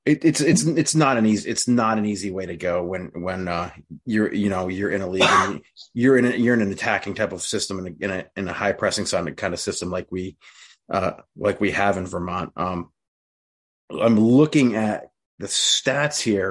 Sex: male